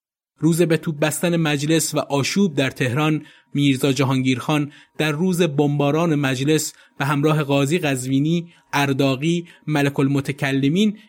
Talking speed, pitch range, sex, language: 120 wpm, 130-160 Hz, male, Persian